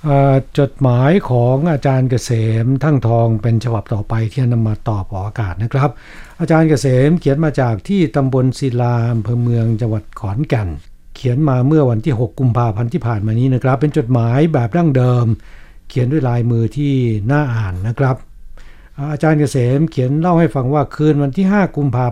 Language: Thai